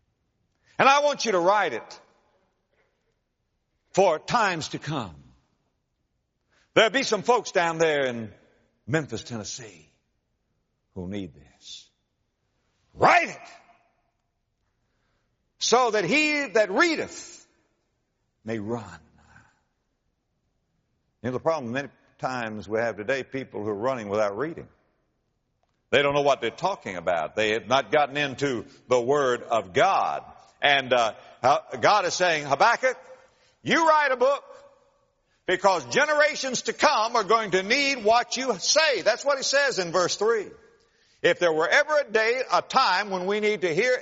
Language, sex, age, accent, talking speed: English, male, 60-79, American, 140 wpm